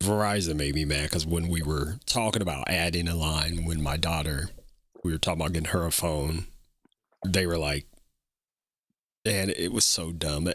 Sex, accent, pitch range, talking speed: male, American, 85-110 Hz, 180 wpm